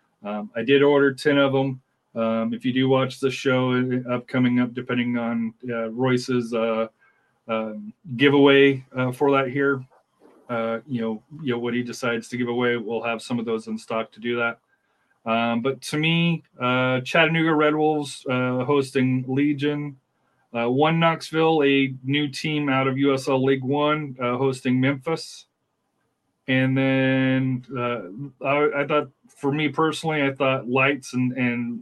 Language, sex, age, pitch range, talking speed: English, male, 30-49, 125-150 Hz, 165 wpm